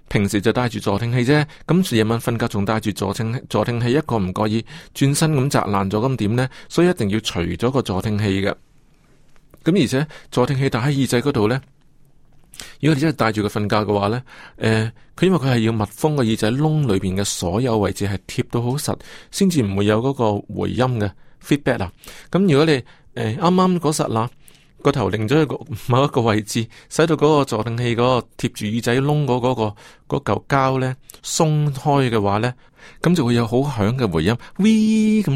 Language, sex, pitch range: Chinese, male, 105-140 Hz